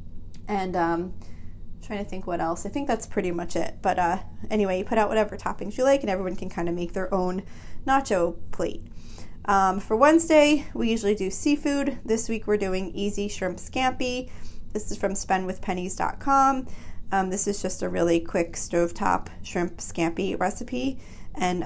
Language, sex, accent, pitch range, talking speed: English, female, American, 165-200 Hz, 175 wpm